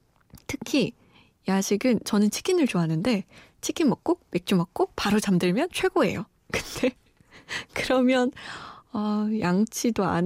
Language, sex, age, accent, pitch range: Korean, female, 20-39, native, 190-260 Hz